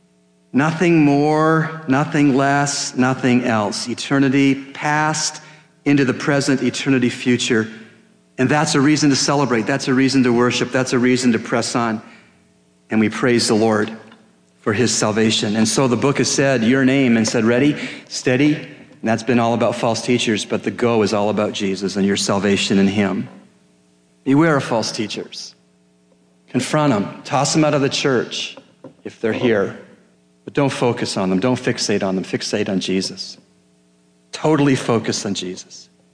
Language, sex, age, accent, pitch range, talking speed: English, male, 40-59, American, 95-130 Hz, 165 wpm